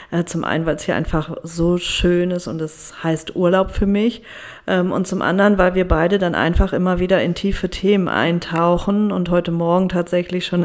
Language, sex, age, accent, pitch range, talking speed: German, female, 40-59, German, 175-210 Hz, 195 wpm